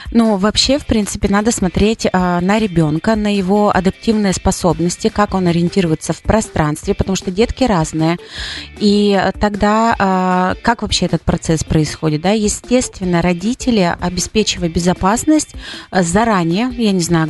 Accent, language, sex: native, Russian, female